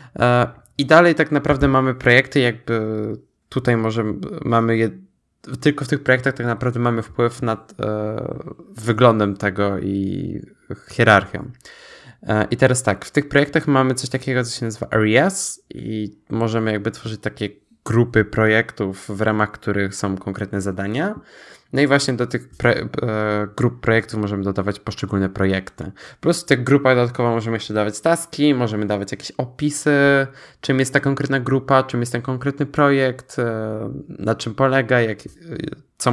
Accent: native